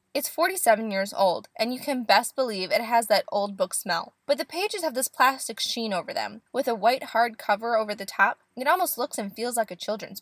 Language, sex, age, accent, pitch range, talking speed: English, female, 10-29, American, 205-290 Hz, 240 wpm